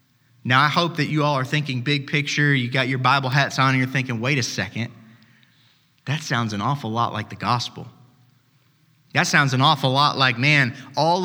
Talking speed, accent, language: 205 wpm, American, English